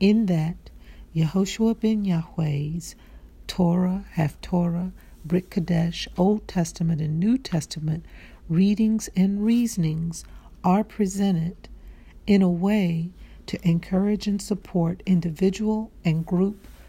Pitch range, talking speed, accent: 160-190 Hz, 105 wpm, American